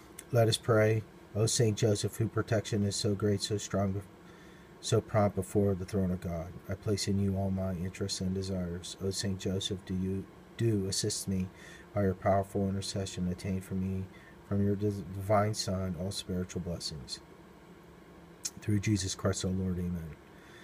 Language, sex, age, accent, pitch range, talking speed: English, male, 40-59, American, 95-110 Hz, 175 wpm